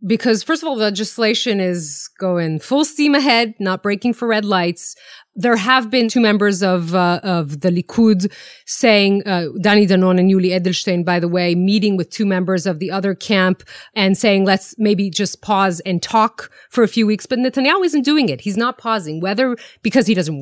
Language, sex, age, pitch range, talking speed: English, female, 30-49, 185-240 Hz, 195 wpm